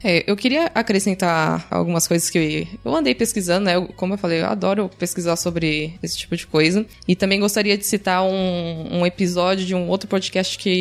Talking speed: 195 wpm